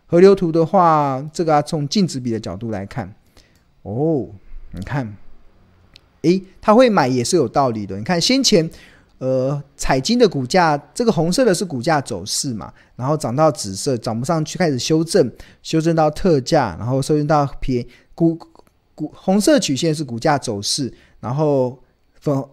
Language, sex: Chinese, male